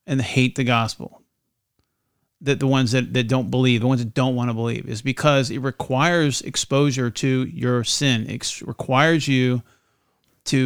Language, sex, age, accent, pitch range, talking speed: English, male, 40-59, American, 125-150 Hz, 175 wpm